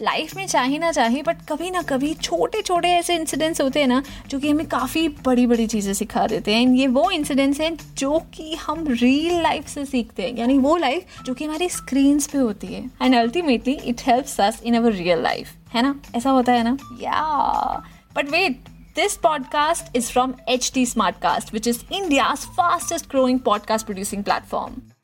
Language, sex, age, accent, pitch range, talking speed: Hindi, female, 20-39, native, 240-315 Hz, 175 wpm